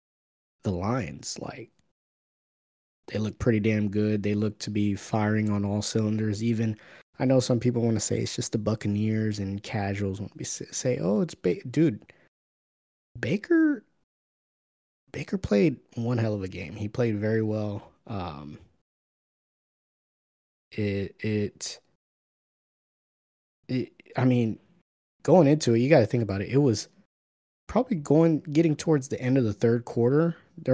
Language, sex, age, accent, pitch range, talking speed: English, male, 20-39, American, 100-125 Hz, 150 wpm